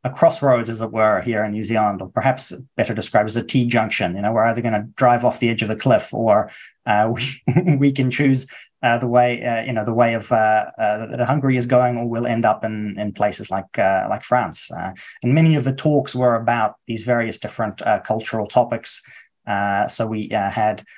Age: 20-39